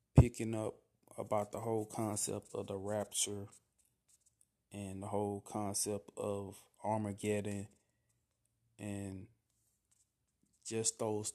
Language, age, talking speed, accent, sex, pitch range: English, 20-39, 95 wpm, American, male, 105-120 Hz